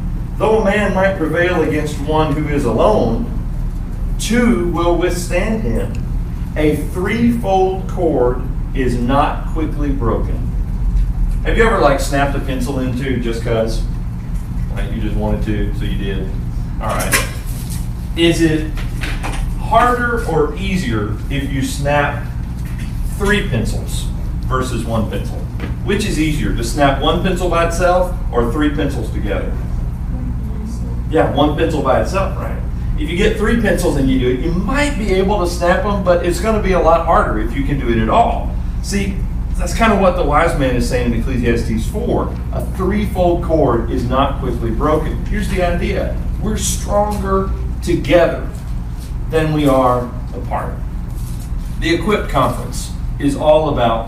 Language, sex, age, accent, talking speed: English, male, 40-59, American, 155 wpm